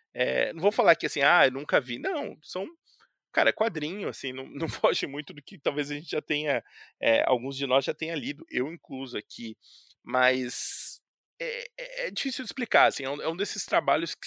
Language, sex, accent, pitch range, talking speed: Portuguese, male, Brazilian, 130-200 Hz, 215 wpm